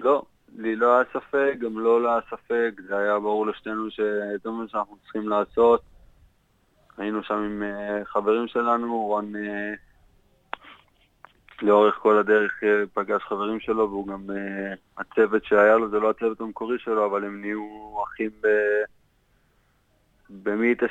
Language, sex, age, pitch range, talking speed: Hebrew, male, 20-39, 105-115 Hz, 130 wpm